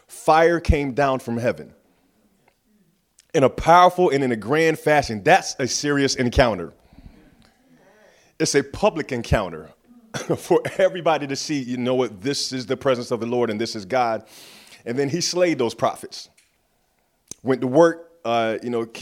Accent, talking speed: American, 160 wpm